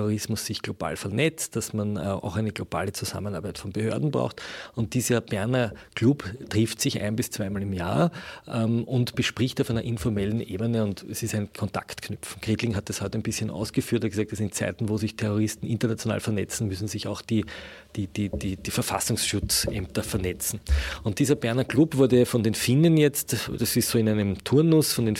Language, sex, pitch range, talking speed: German, male, 105-125 Hz, 190 wpm